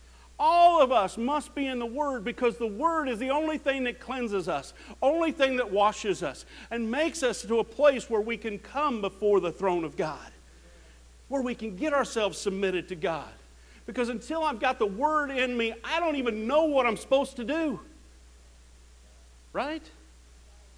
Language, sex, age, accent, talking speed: English, male, 50-69, American, 185 wpm